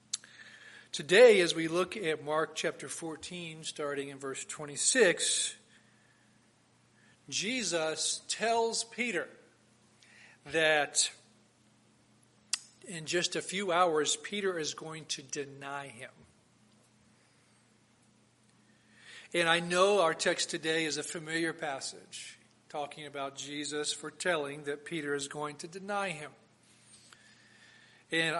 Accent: American